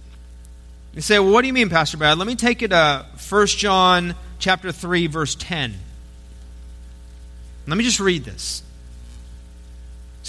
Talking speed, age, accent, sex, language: 150 wpm, 40-59, American, male, English